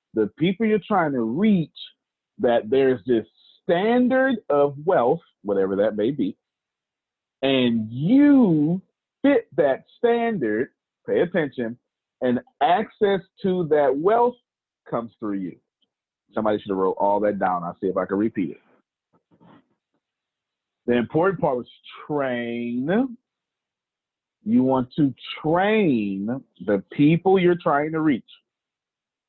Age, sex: 40-59, male